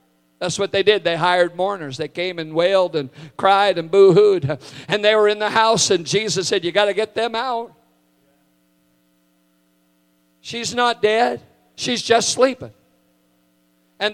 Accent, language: American, English